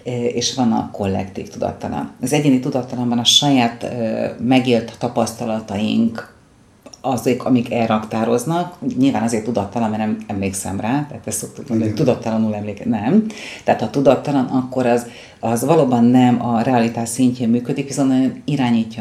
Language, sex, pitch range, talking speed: Hungarian, female, 115-140 Hz, 140 wpm